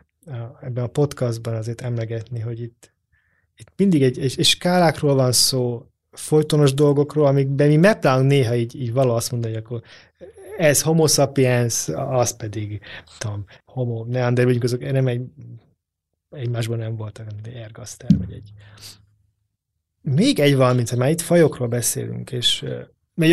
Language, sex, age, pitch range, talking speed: Hungarian, male, 30-49, 115-145 Hz, 145 wpm